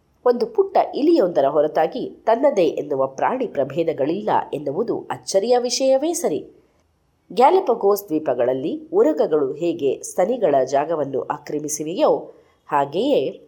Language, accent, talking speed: Kannada, native, 90 wpm